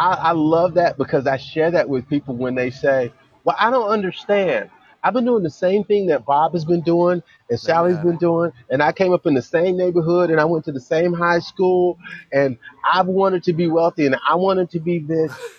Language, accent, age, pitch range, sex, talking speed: English, American, 30-49, 135-185 Hz, male, 225 wpm